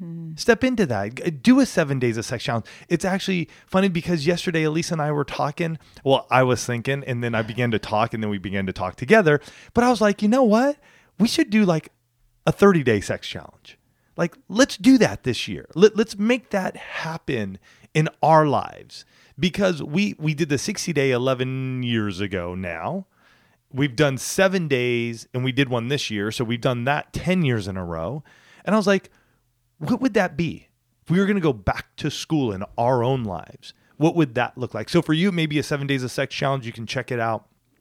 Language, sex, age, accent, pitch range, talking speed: English, male, 30-49, American, 115-165 Hz, 215 wpm